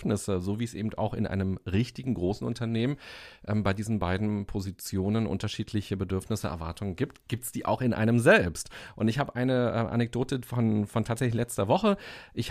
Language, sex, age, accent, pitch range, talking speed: German, male, 40-59, German, 100-125 Hz, 180 wpm